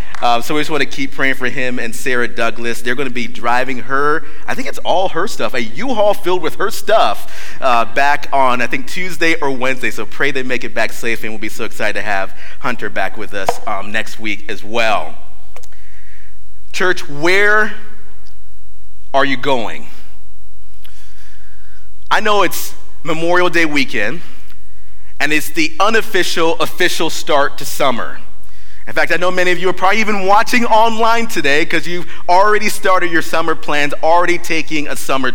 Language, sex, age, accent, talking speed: English, male, 30-49, American, 180 wpm